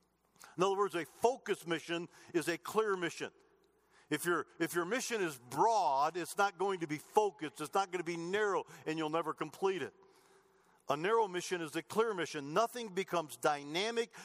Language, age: English, 50-69